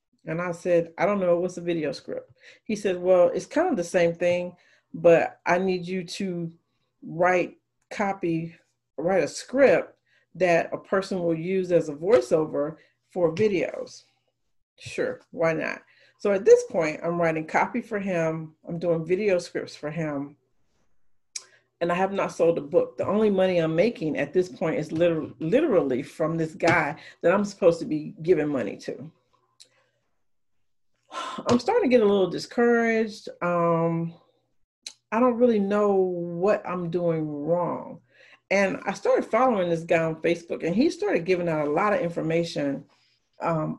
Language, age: English, 40-59